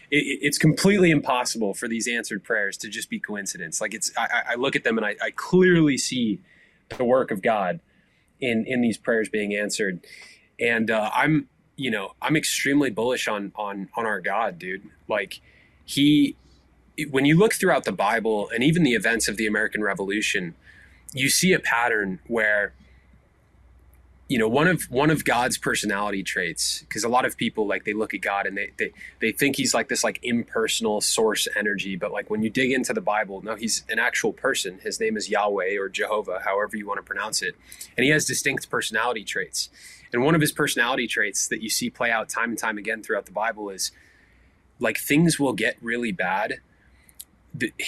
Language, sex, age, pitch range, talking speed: English, male, 20-39, 105-145 Hz, 195 wpm